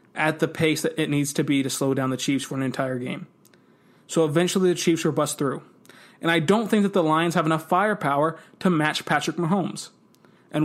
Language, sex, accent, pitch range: English, male, American, 155-185 Hz